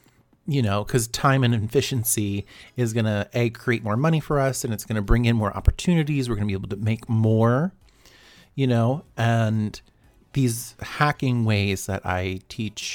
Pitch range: 105-130 Hz